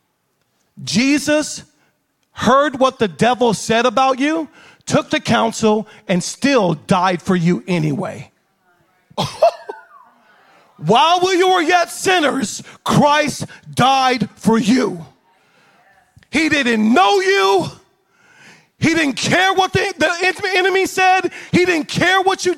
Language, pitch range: English, 215-320 Hz